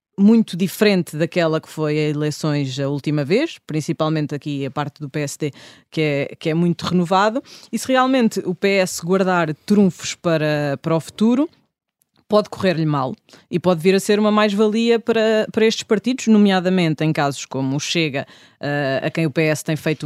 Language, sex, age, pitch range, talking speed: Portuguese, female, 20-39, 155-205 Hz, 180 wpm